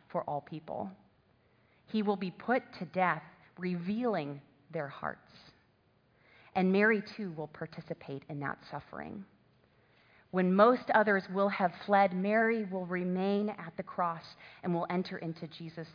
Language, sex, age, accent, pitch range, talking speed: English, female, 30-49, American, 155-210 Hz, 140 wpm